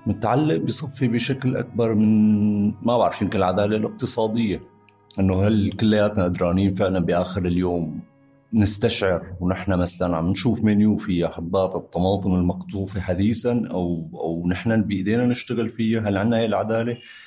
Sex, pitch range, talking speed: male, 90-115 Hz, 125 wpm